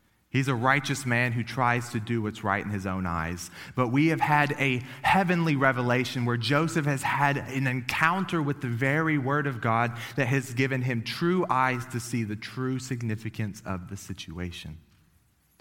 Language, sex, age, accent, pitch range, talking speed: English, male, 30-49, American, 90-130 Hz, 180 wpm